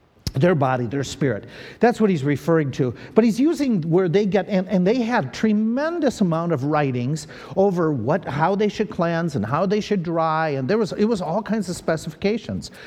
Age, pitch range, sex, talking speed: 50-69, 130-185 Hz, male, 200 wpm